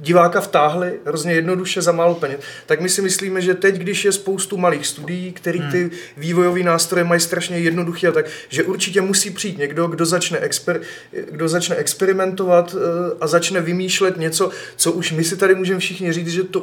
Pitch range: 165-185 Hz